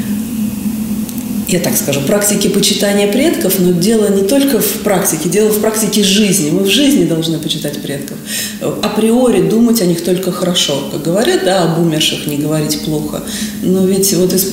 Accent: native